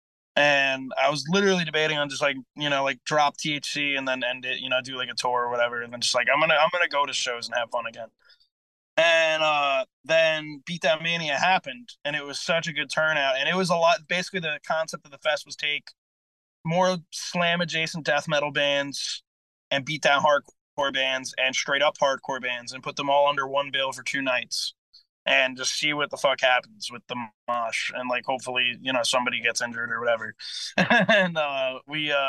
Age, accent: 20-39, American